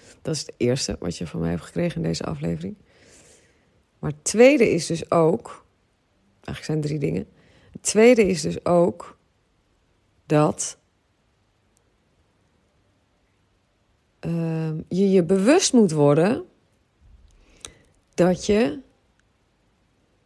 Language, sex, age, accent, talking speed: Dutch, female, 40-59, Dutch, 110 wpm